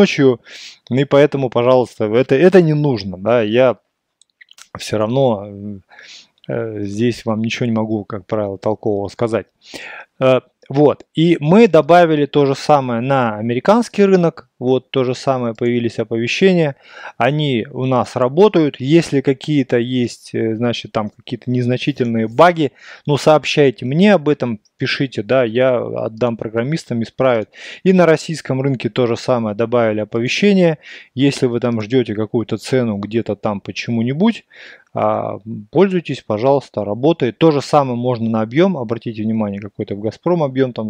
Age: 20-39